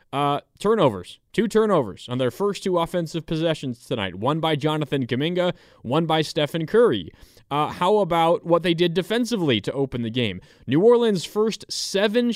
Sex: male